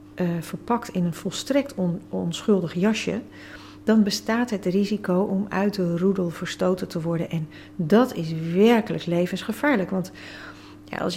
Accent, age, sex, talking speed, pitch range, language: Dutch, 40-59, female, 135 wpm, 165-195 Hz, Dutch